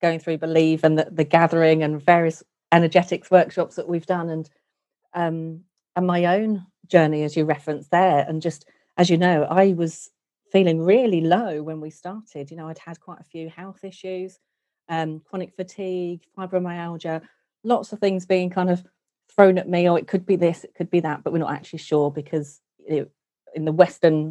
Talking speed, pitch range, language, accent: 195 wpm, 160-190 Hz, English, British